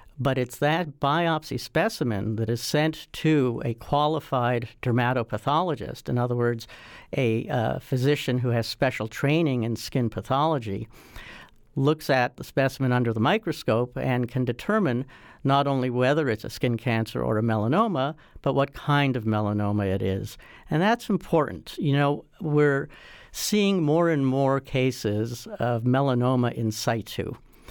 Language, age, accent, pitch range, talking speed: English, 60-79, American, 115-145 Hz, 145 wpm